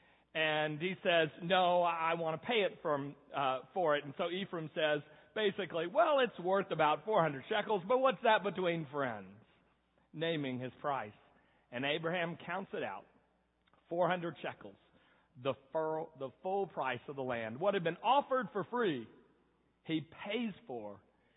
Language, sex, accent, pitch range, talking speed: English, male, American, 145-190 Hz, 155 wpm